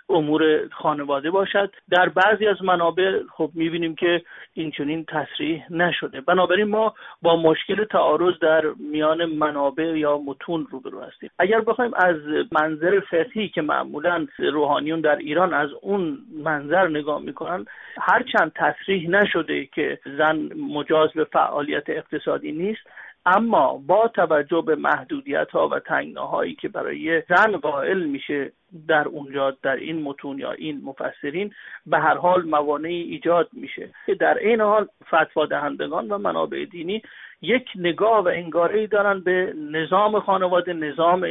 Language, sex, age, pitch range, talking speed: Persian, male, 50-69, 155-200 Hz, 140 wpm